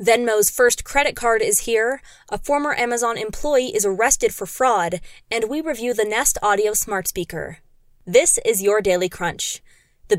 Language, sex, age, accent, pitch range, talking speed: English, female, 20-39, American, 200-245 Hz, 165 wpm